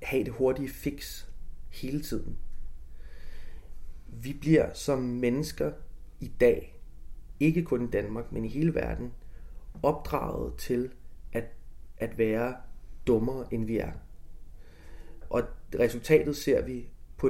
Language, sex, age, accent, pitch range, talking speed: Danish, male, 30-49, native, 80-130 Hz, 120 wpm